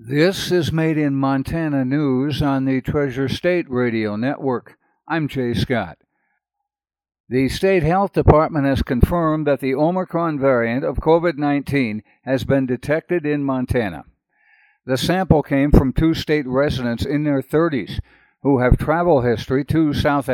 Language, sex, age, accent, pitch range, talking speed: English, male, 60-79, American, 125-160 Hz, 140 wpm